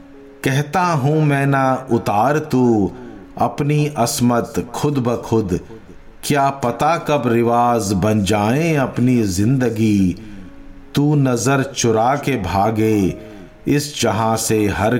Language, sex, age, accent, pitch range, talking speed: Hindi, male, 50-69, native, 95-135 Hz, 110 wpm